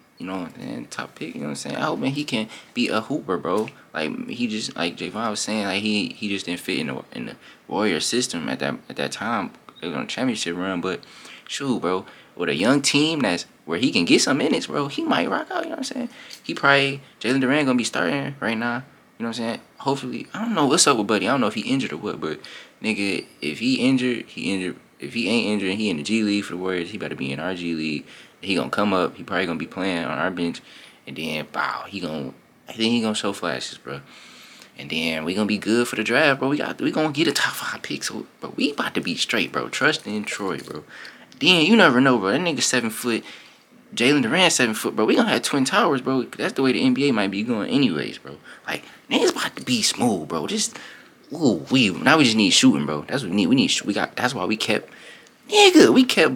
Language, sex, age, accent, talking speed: English, male, 20-39, American, 260 wpm